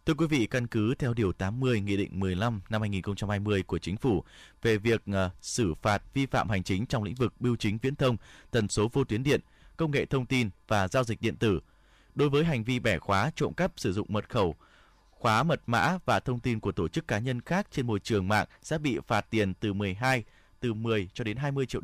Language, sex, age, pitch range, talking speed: Vietnamese, male, 20-39, 100-135 Hz, 235 wpm